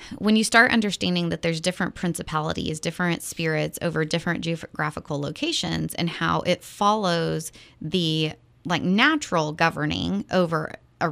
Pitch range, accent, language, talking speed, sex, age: 155-180 Hz, American, English, 130 wpm, female, 20-39